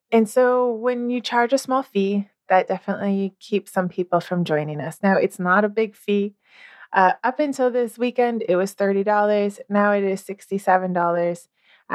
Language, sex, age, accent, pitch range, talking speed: English, female, 20-39, American, 185-235 Hz, 170 wpm